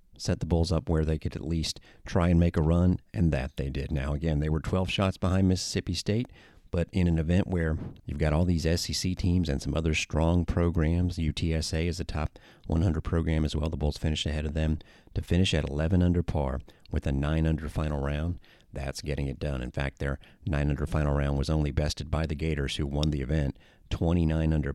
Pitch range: 70-85 Hz